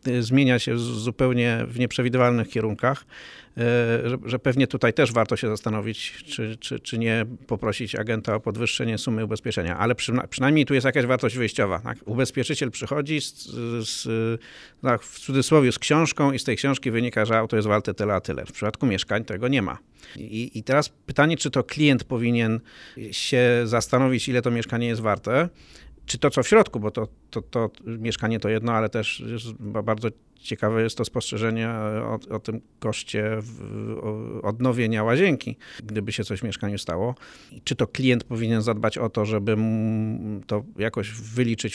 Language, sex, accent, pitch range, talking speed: Polish, male, native, 110-125 Hz, 165 wpm